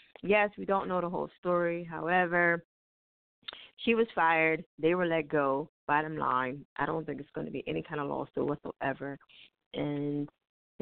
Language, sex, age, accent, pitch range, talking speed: English, female, 20-39, American, 155-195 Hz, 170 wpm